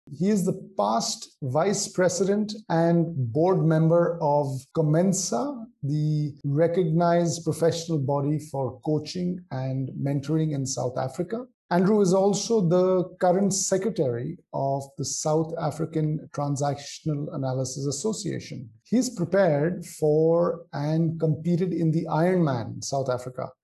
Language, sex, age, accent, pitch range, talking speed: English, male, 50-69, Indian, 140-170 Hz, 115 wpm